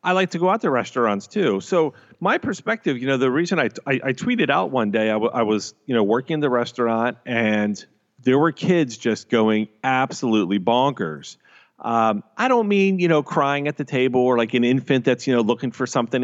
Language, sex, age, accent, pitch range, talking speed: English, male, 40-59, American, 115-155 Hz, 220 wpm